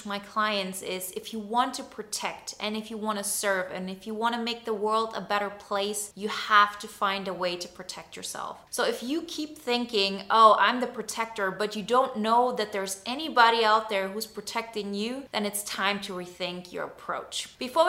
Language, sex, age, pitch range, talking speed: English, female, 20-39, 195-230 Hz, 210 wpm